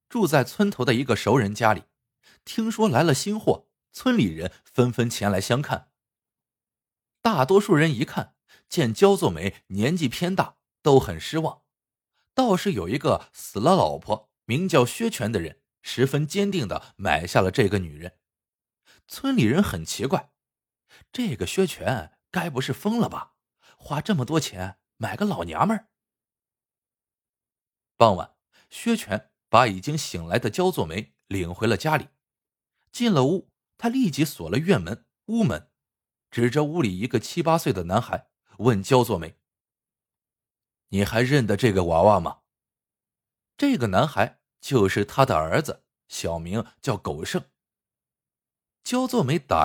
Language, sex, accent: Chinese, male, native